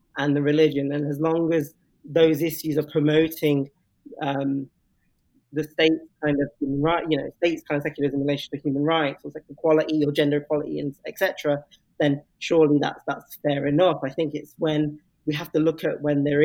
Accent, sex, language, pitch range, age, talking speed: British, male, English, 145-155 Hz, 20-39, 195 wpm